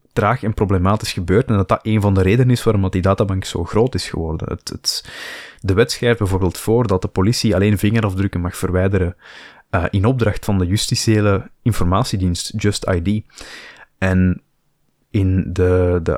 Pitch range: 90-110 Hz